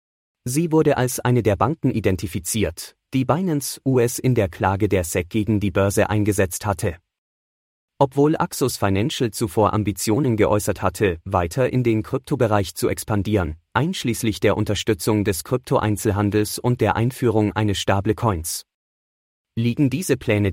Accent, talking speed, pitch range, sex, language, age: German, 135 wpm, 100-120 Hz, male, English, 30-49